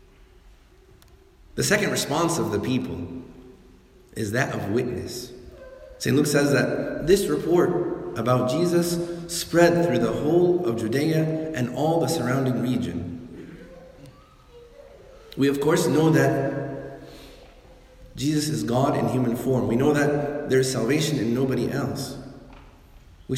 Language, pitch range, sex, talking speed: English, 110-140 Hz, male, 130 wpm